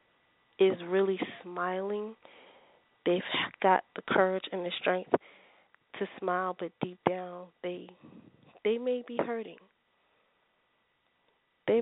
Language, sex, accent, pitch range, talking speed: English, female, American, 185-230 Hz, 105 wpm